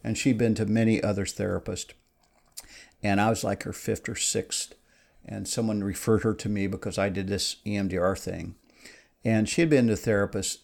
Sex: male